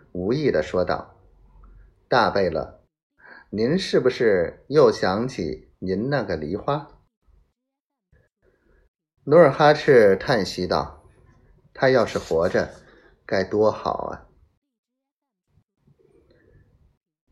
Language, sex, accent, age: Chinese, male, native, 30-49